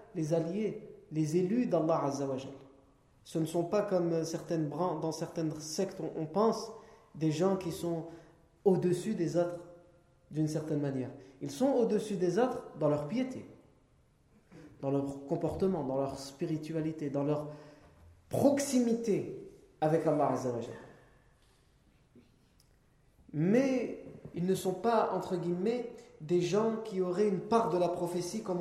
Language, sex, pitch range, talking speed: French, male, 155-205 Hz, 130 wpm